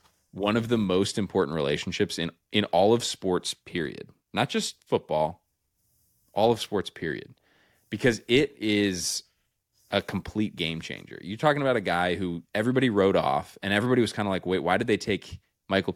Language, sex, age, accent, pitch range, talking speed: English, male, 20-39, American, 85-100 Hz, 175 wpm